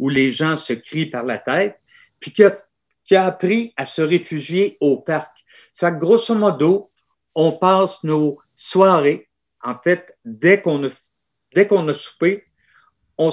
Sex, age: male, 50-69